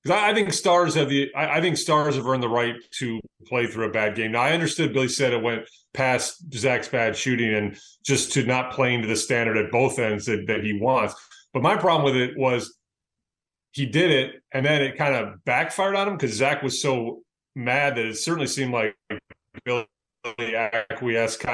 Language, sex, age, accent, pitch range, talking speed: English, male, 30-49, American, 110-135 Hz, 195 wpm